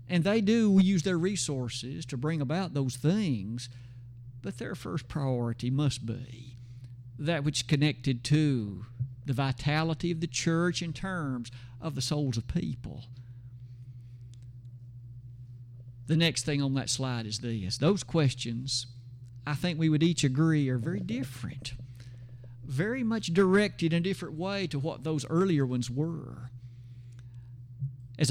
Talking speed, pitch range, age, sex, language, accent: 140 wpm, 120-160 Hz, 50-69, male, English, American